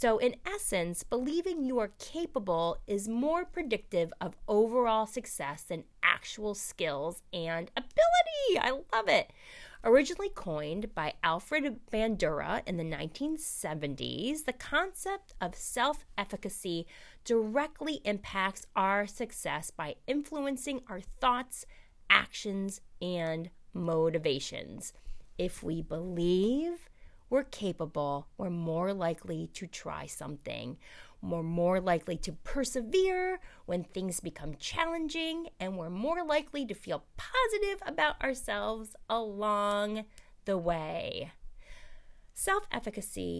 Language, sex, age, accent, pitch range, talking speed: English, female, 30-49, American, 170-260 Hz, 105 wpm